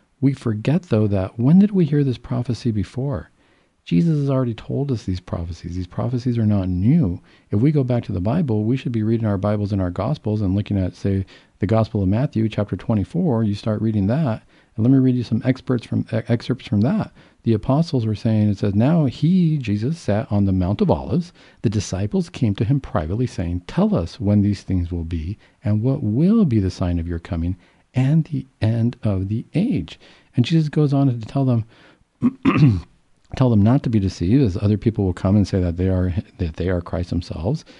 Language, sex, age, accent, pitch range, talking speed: English, male, 50-69, American, 100-130 Hz, 215 wpm